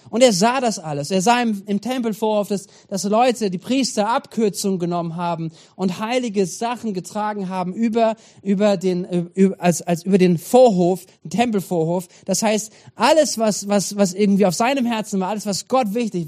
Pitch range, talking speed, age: 190-235 Hz, 180 wpm, 40-59